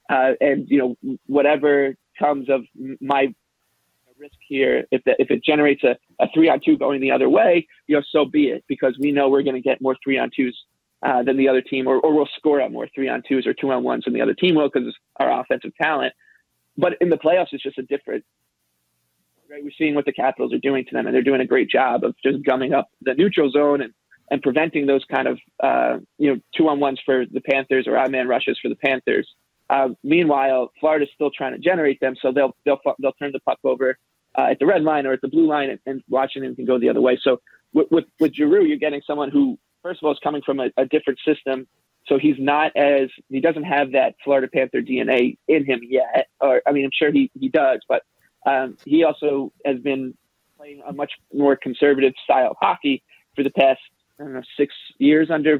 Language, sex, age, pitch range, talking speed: English, male, 20-39, 135-150 Hz, 235 wpm